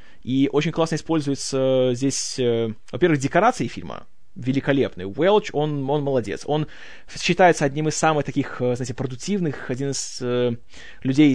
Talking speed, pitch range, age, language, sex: 130 wpm, 125-165 Hz, 20-39, Russian, male